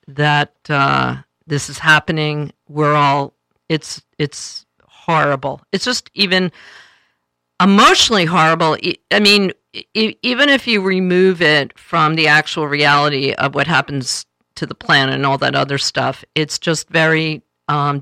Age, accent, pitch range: 50-69, American, 140-175 Hz